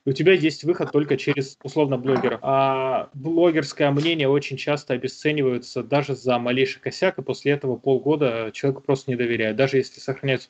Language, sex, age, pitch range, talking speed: Russian, male, 20-39, 135-160 Hz, 165 wpm